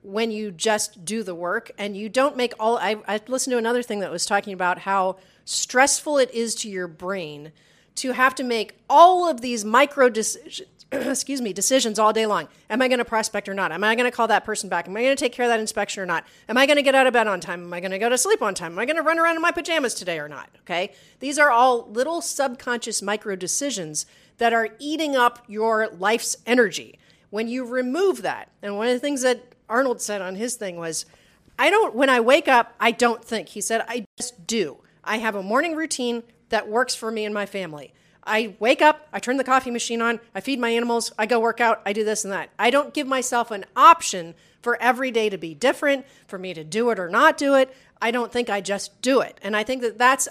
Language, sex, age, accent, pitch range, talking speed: English, female, 40-59, American, 205-255 Hz, 255 wpm